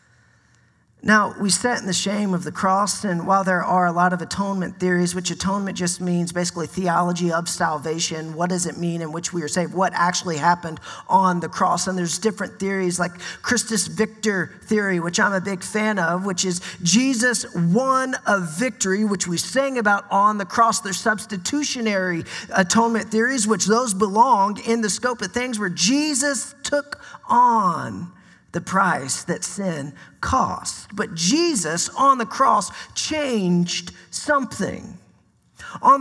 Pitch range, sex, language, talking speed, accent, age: 180-245 Hz, male, English, 160 wpm, American, 40-59